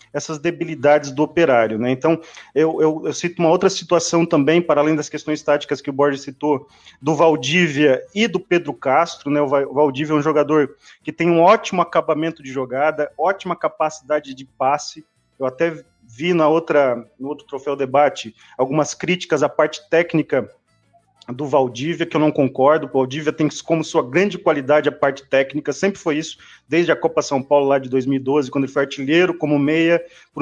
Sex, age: male, 30-49